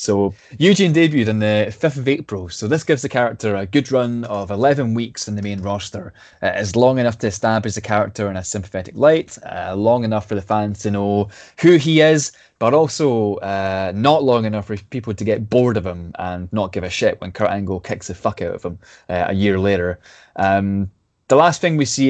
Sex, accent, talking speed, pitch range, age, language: male, British, 225 wpm, 100-125 Hz, 20-39, English